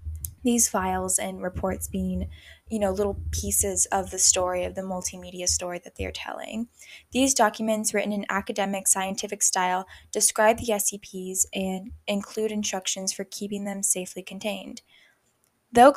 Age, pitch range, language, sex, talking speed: 10-29, 185-210 Hz, English, female, 145 wpm